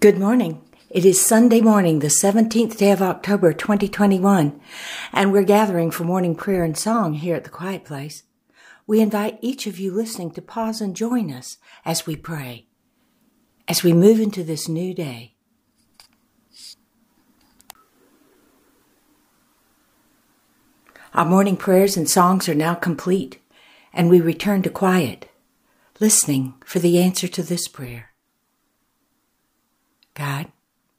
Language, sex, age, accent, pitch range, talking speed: English, female, 60-79, American, 160-210 Hz, 130 wpm